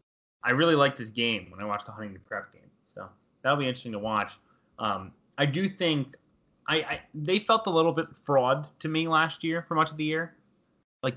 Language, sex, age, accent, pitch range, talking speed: English, male, 20-39, American, 110-140 Hz, 215 wpm